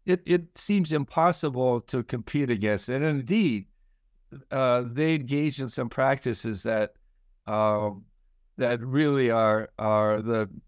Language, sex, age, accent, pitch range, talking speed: English, male, 60-79, American, 110-150 Hz, 130 wpm